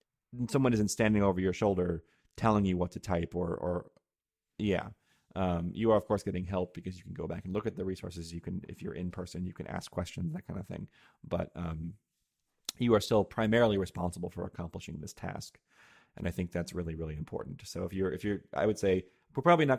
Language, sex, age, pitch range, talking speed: English, male, 30-49, 85-100 Hz, 225 wpm